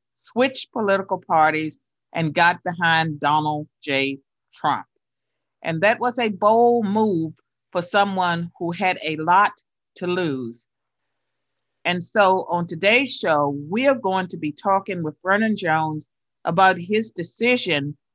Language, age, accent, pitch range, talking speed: English, 50-69, American, 160-205 Hz, 130 wpm